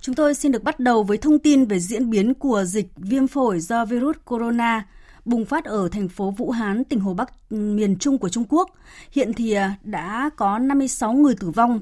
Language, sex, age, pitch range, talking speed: Vietnamese, female, 20-39, 200-260 Hz, 215 wpm